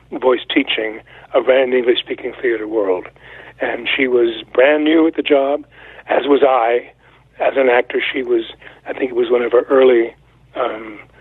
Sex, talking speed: male, 175 wpm